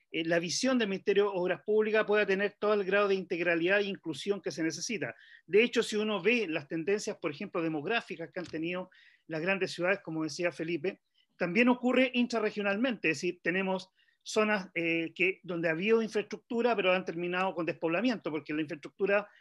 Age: 40-59